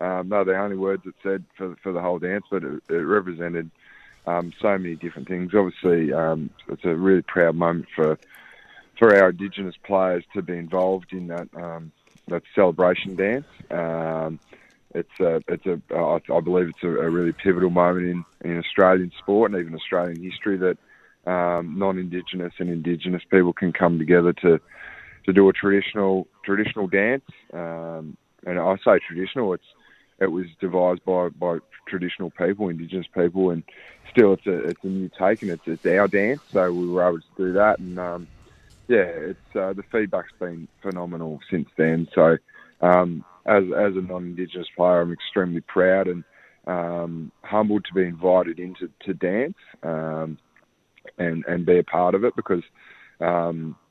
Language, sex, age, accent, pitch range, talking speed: English, male, 20-39, Australian, 85-95 Hz, 175 wpm